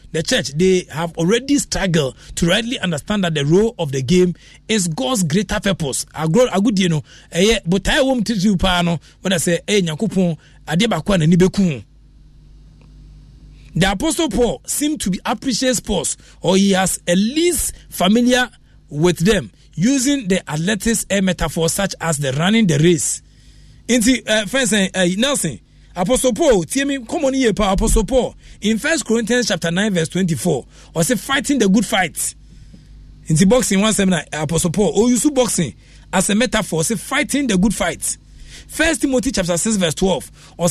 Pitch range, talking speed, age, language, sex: 175-240 Hz, 150 wpm, 40-59, English, male